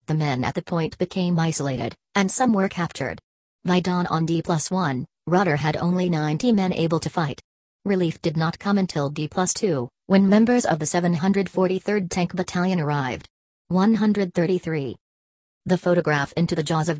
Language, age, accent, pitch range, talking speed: English, 40-59, American, 150-180 Hz, 155 wpm